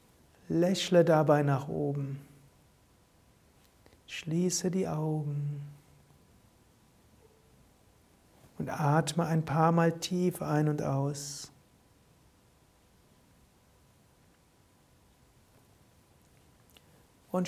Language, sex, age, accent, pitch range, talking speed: German, male, 60-79, German, 145-175 Hz, 60 wpm